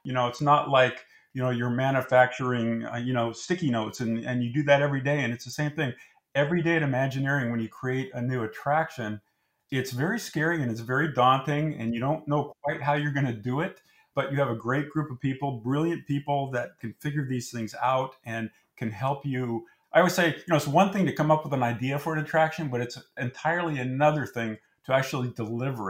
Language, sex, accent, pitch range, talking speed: English, male, American, 125-150 Hz, 230 wpm